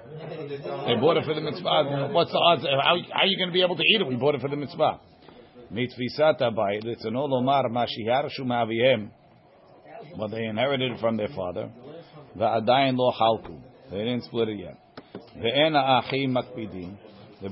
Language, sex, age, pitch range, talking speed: English, male, 50-69, 115-145 Hz, 155 wpm